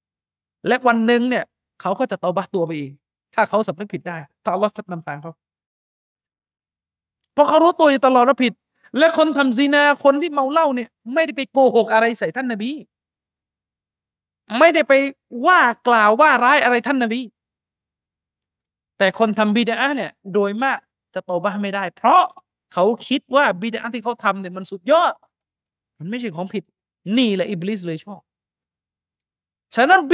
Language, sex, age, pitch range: Thai, male, 20-39, 180-270 Hz